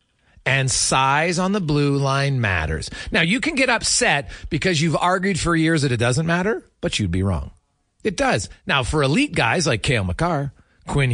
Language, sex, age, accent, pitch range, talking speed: English, male, 40-59, American, 115-185 Hz, 190 wpm